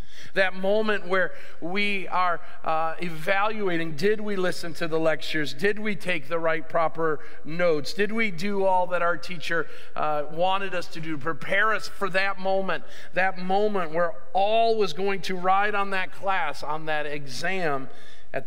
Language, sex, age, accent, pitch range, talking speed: English, male, 40-59, American, 170-205 Hz, 170 wpm